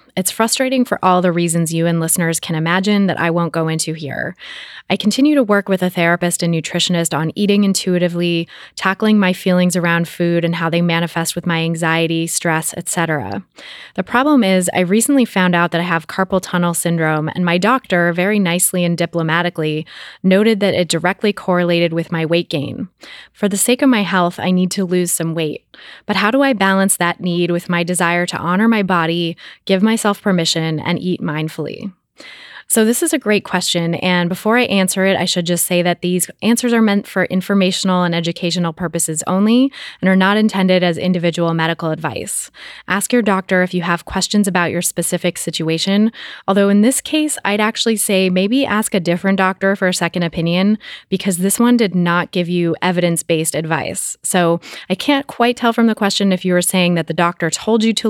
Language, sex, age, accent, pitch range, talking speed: English, female, 20-39, American, 170-200 Hz, 200 wpm